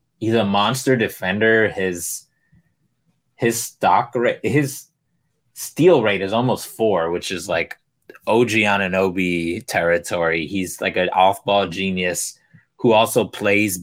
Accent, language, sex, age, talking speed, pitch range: American, English, male, 20-39, 135 wpm, 90-115 Hz